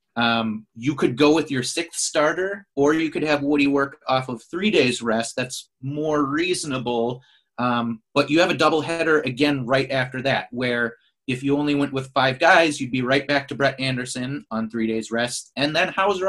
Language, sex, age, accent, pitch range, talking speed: English, male, 30-49, American, 125-150 Hz, 205 wpm